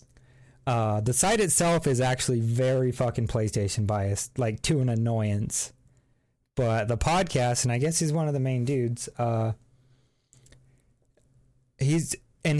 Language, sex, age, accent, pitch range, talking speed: English, male, 30-49, American, 125-170 Hz, 140 wpm